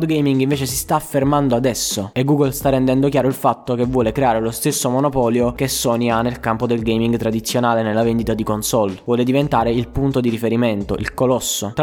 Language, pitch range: Italian, 115-135 Hz